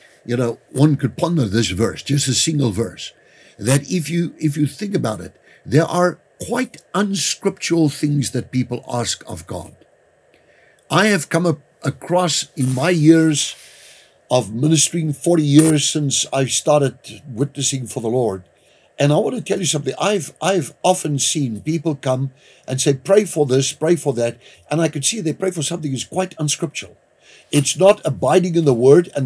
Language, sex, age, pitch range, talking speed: English, male, 60-79, 135-175 Hz, 180 wpm